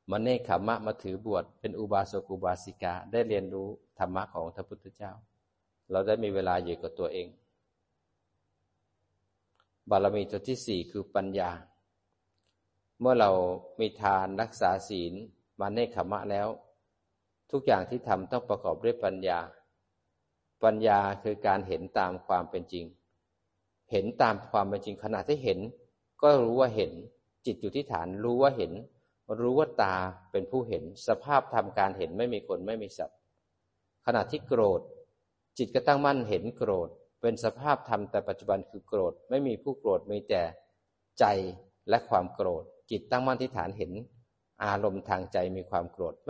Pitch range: 95-120 Hz